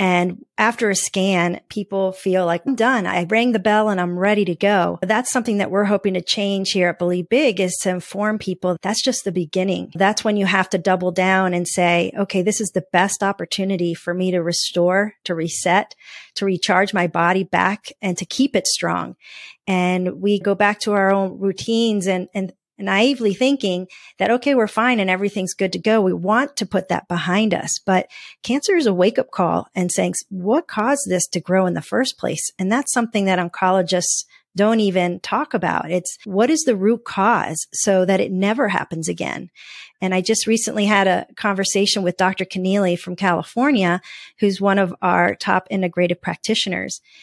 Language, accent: English, American